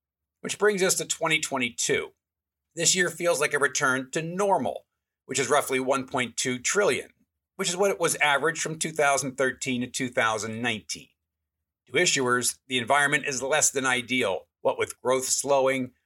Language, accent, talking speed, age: English, American, 150 wpm, 50-69